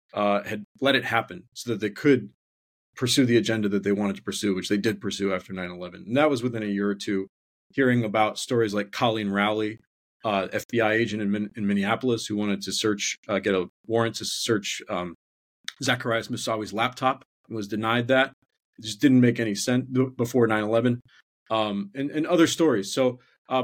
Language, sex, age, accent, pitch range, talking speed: English, male, 40-59, American, 105-130 Hz, 200 wpm